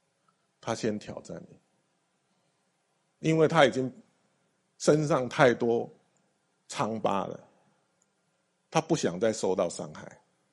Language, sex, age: Chinese, male, 50-69